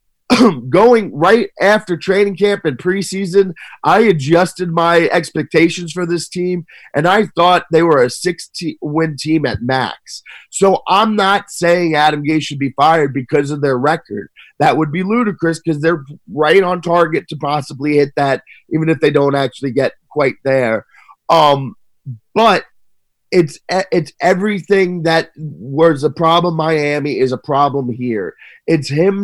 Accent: American